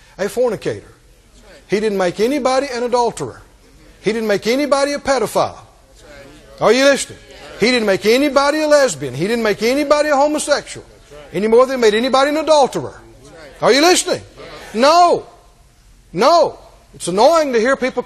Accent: American